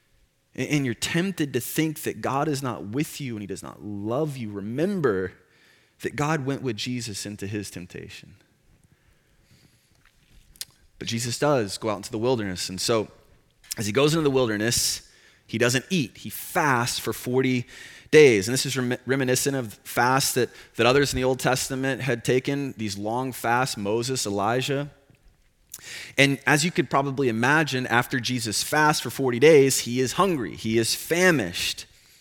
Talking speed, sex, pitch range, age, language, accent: 165 wpm, male, 100-140 Hz, 30-49, English, American